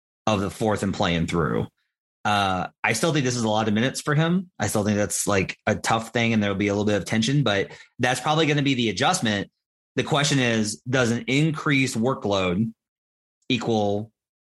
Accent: American